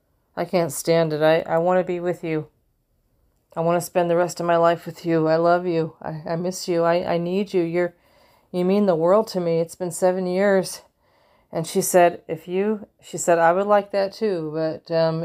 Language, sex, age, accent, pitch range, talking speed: English, female, 40-59, American, 155-175 Hz, 230 wpm